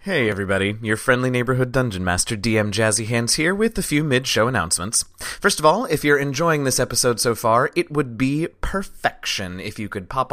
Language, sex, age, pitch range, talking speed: English, male, 30-49, 115-150 Hz, 200 wpm